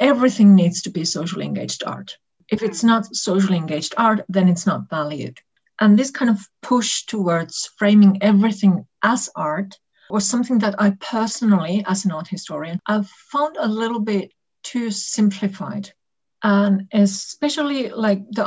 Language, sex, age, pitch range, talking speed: English, female, 50-69, 190-230 Hz, 155 wpm